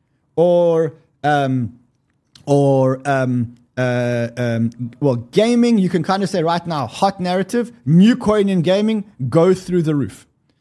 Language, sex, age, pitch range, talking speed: English, male, 20-39, 135-185 Hz, 140 wpm